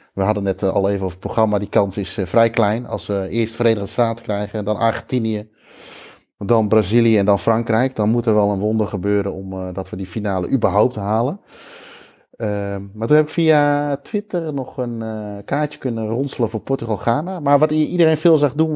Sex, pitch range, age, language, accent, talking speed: male, 105-140 Hz, 30-49, Dutch, Dutch, 195 wpm